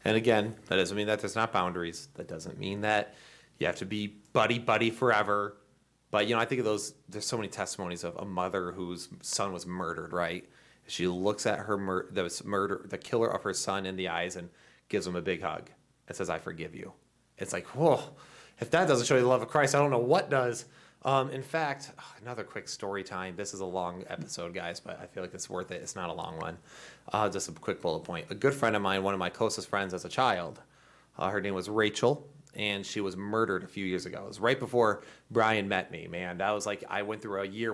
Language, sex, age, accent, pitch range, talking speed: English, male, 30-49, American, 95-125 Hz, 240 wpm